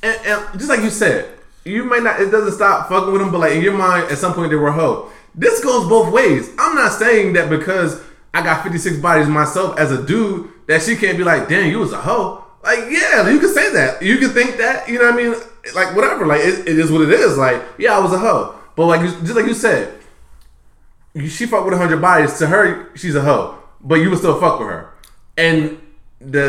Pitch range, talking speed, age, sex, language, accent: 140-195 Hz, 245 wpm, 20-39, male, English, American